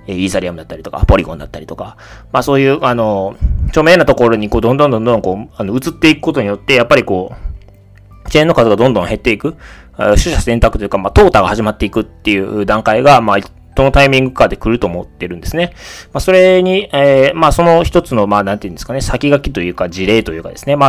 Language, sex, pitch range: Japanese, male, 95-130 Hz